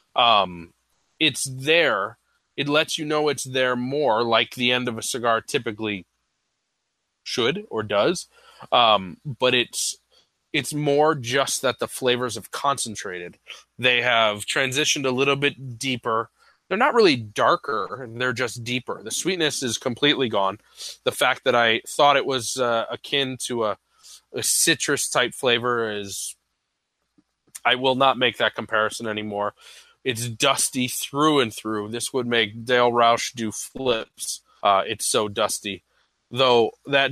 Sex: male